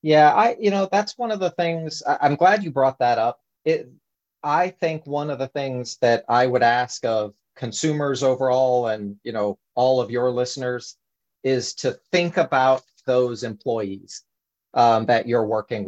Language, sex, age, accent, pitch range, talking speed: English, male, 40-59, American, 120-145 Hz, 170 wpm